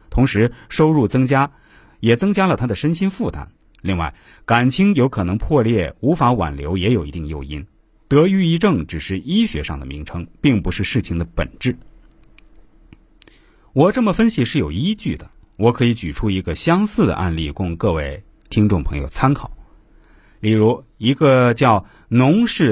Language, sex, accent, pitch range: Chinese, male, native, 90-150 Hz